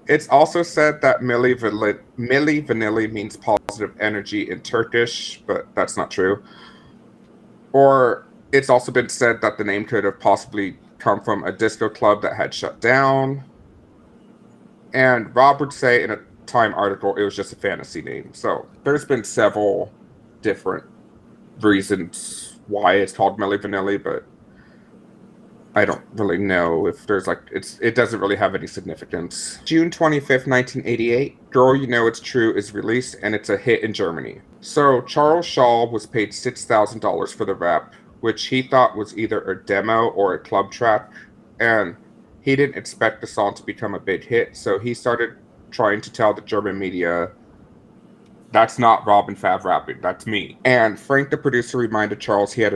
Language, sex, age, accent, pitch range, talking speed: English, male, 30-49, American, 105-135 Hz, 165 wpm